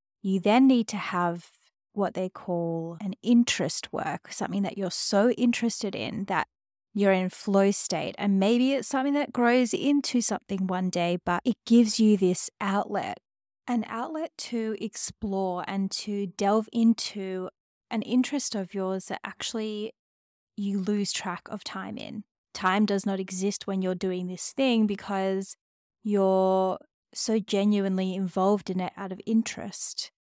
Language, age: English, 20-39